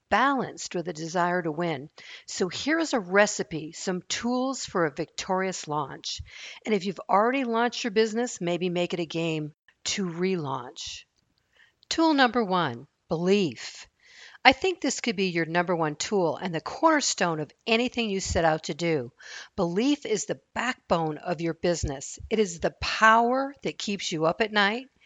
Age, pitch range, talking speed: 50-69, 165-235 Hz, 170 wpm